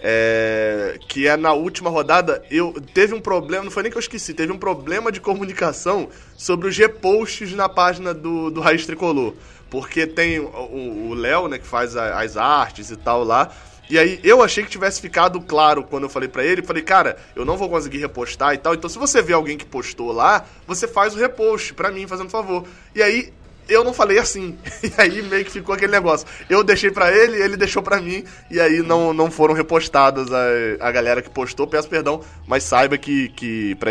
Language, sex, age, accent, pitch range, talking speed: Portuguese, male, 20-39, Brazilian, 140-200 Hz, 210 wpm